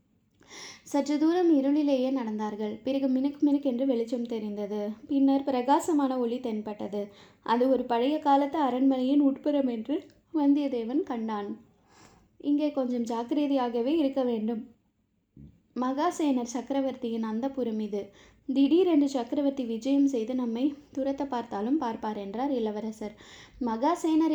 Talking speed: 105 wpm